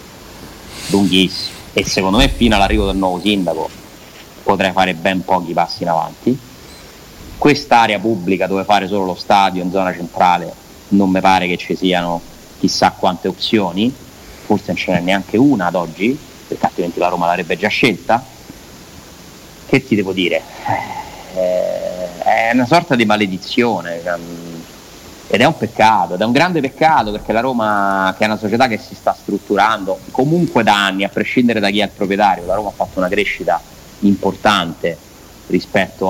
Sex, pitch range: male, 95-105 Hz